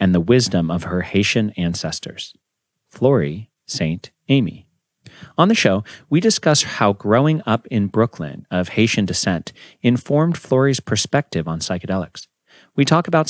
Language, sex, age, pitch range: English, male, 40-59, 95-140 Hz